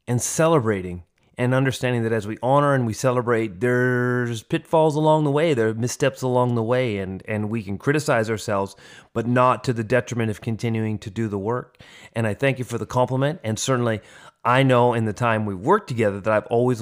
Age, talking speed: 30-49, 210 wpm